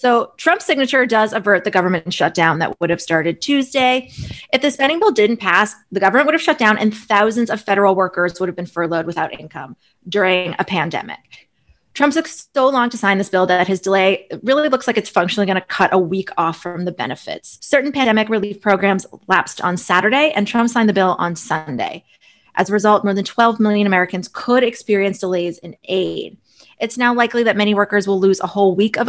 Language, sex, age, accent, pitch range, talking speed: English, female, 20-39, American, 180-230 Hz, 215 wpm